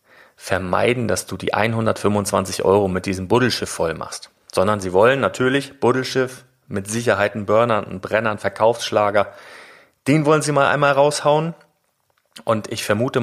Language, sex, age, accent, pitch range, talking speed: German, male, 30-49, German, 100-125 Hz, 145 wpm